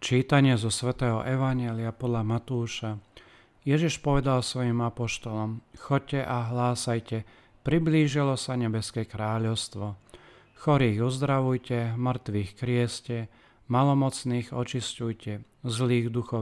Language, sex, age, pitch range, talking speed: Slovak, male, 40-59, 115-130 Hz, 90 wpm